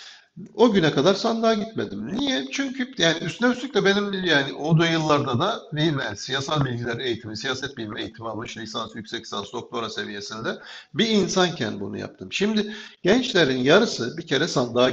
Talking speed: 160 wpm